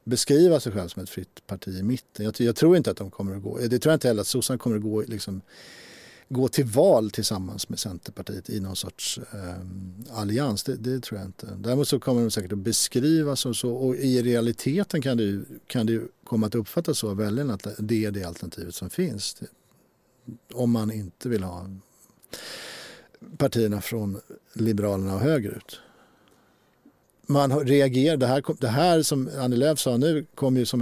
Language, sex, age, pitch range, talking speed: Swedish, male, 50-69, 105-130 Hz, 195 wpm